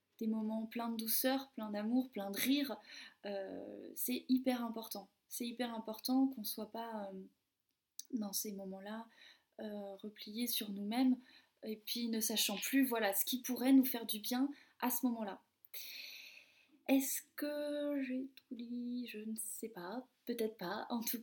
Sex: female